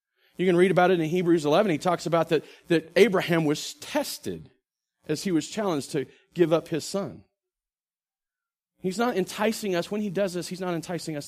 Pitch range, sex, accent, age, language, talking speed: 165-250 Hz, male, American, 40-59, English, 195 wpm